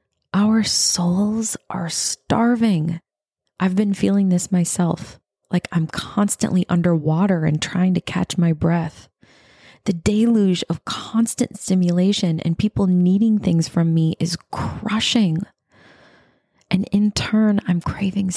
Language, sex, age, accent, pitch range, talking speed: English, female, 20-39, American, 170-200 Hz, 120 wpm